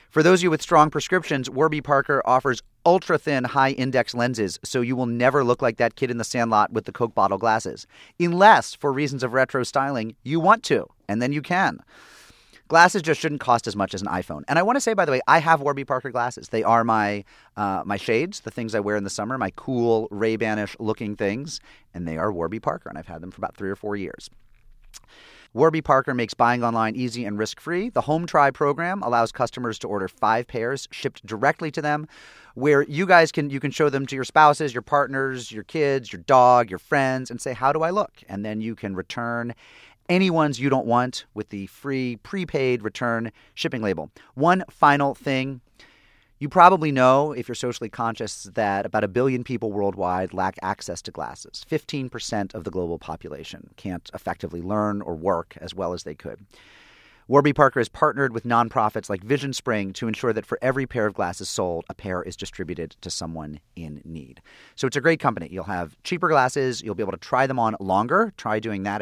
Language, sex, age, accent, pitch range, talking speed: English, male, 30-49, American, 105-140 Hz, 210 wpm